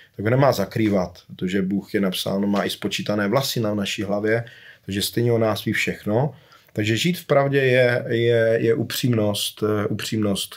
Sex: male